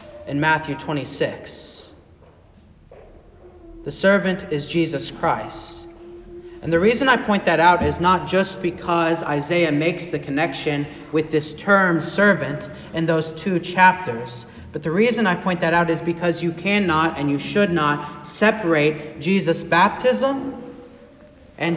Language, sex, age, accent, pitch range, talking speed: English, male, 40-59, American, 160-200 Hz, 140 wpm